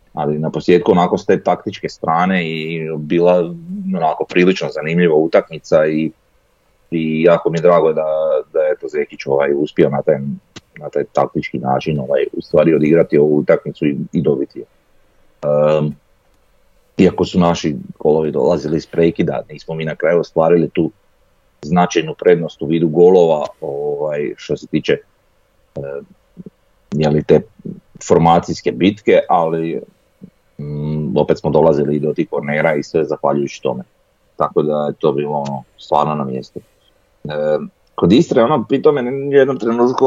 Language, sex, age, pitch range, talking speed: Croatian, male, 40-59, 75-115 Hz, 145 wpm